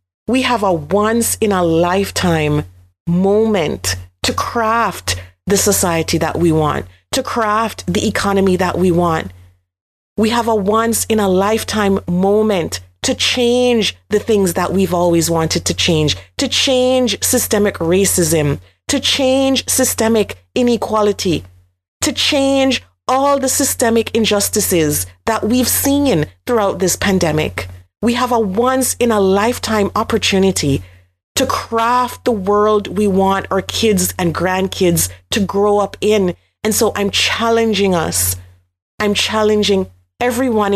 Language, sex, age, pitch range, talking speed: English, female, 40-59, 170-225 Hz, 125 wpm